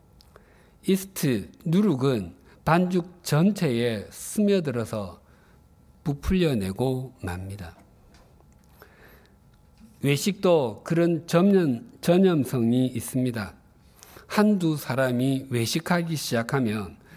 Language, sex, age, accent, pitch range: Korean, male, 50-69, native, 105-155 Hz